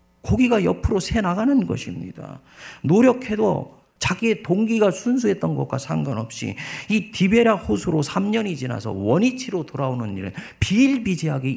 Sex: male